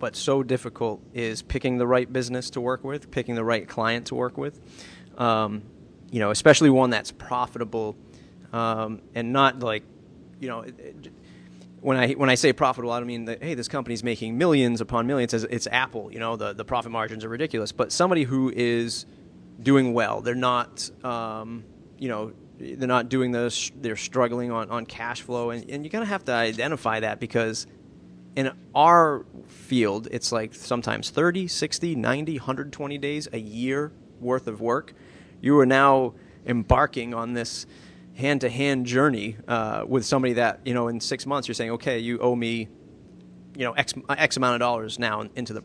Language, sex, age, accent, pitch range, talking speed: English, male, 30-49, American, 110-130 Hz, 185 wpm